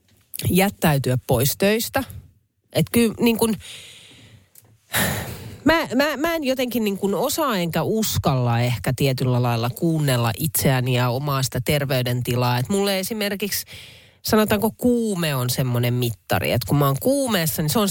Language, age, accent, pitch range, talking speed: Finnish, 30-49, native, 125-185 Hz, 135 wpm